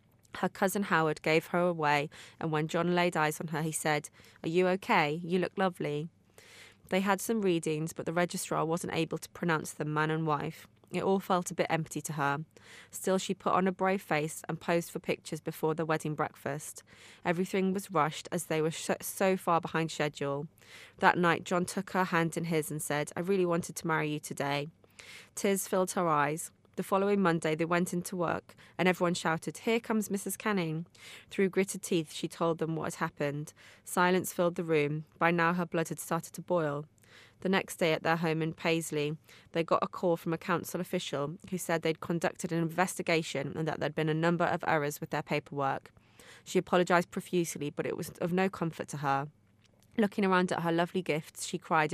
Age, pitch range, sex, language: 20-39, 155-180 Hz, female, English